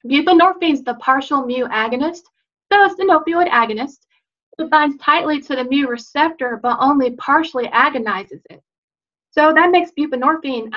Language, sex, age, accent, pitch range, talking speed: English, female, 40-59, American, 235-300 Hz, 150 wpm